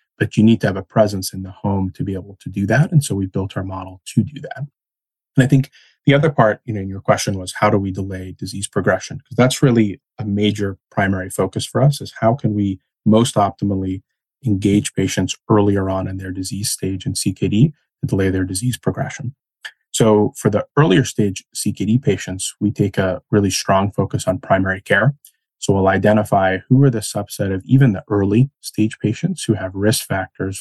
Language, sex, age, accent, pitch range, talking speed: English, male, 20-39, American, 95-115 Hz, 210 wpm